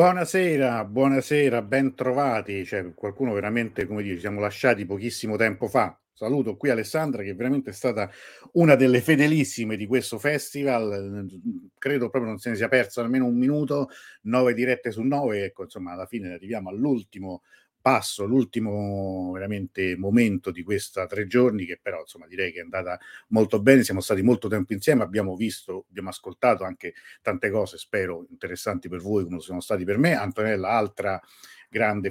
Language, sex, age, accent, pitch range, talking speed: Italian, male, 50-69, native, 95-130 Hz, 165 wpm